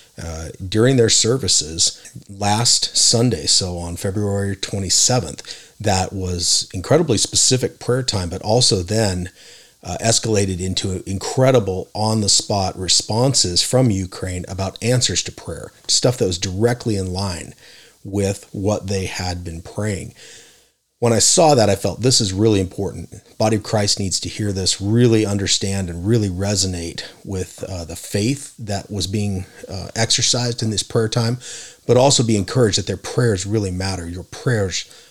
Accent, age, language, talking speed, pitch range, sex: American, 40-59, English, 150 wpm, 95-115 Hz, male